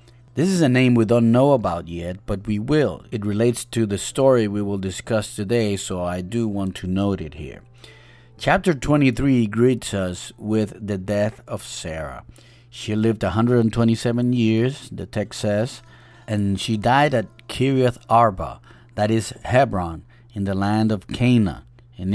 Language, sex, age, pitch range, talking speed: English, male, 30-49, 100-125 Hz, 165 wpm